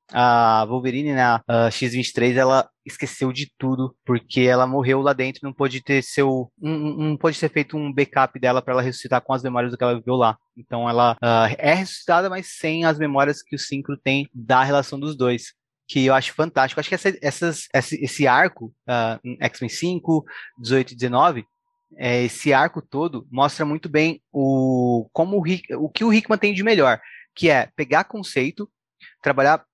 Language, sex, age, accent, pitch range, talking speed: Portuguese, male, 20-39, Brazilian, 125-145 Hz, 190 wpm